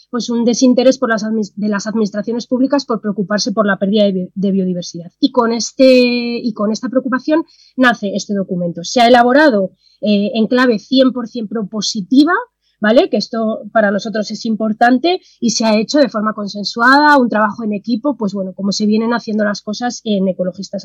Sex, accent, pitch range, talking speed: female, Spanish, 210-260 Hz, 180 wpm